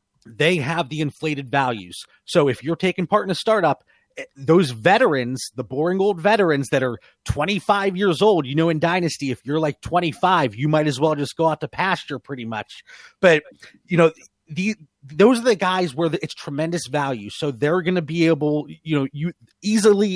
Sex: male